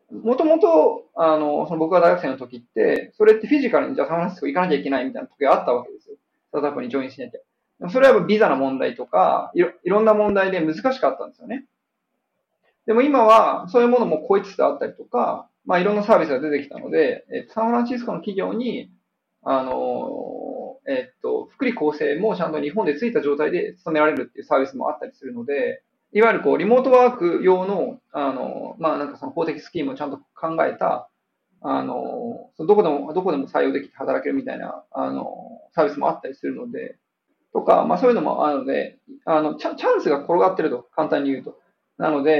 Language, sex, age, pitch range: Japanese, male, 20-39, 155-260 Hz